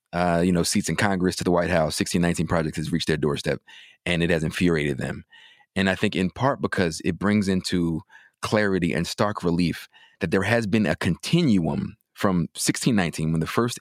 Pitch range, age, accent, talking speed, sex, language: 85-95 Hz, 30-49, American, 195 wpm, male, English